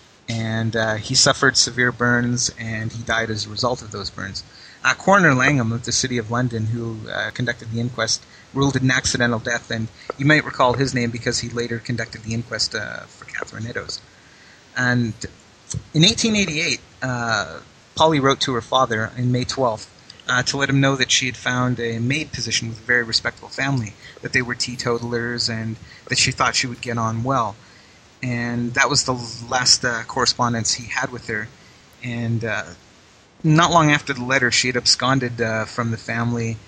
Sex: male